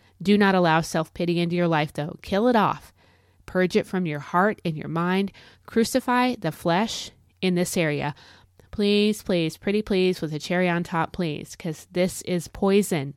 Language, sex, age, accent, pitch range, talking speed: English, female, 30-49, American, 155-205 Hz, 180 wpm